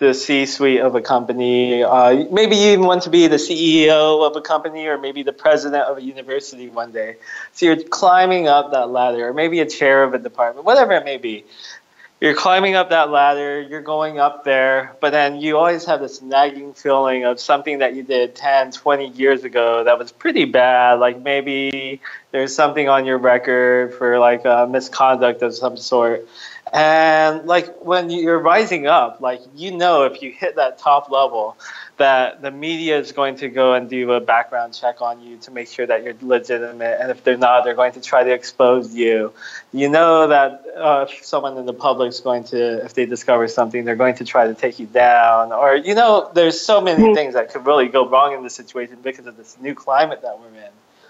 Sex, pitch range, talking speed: male, 125-155 Hz, 210 wpm